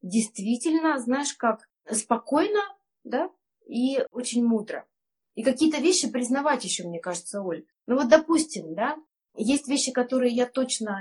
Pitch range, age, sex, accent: 225-315 Hz, 20-39, female, native